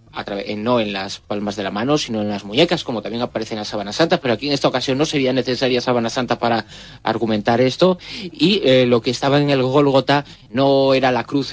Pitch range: 110-140 Hz